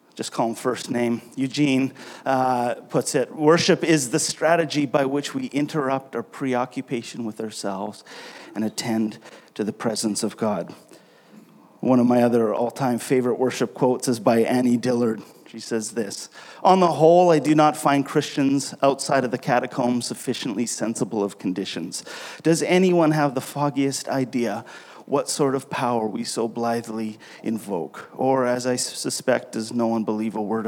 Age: 40-59